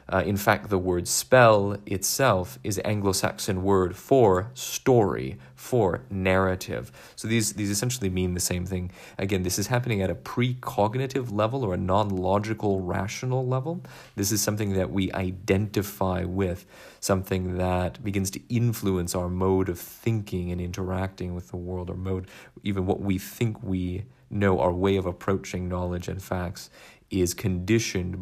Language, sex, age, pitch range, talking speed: English, male, 30-49, 90-105 Hz, 155 wpm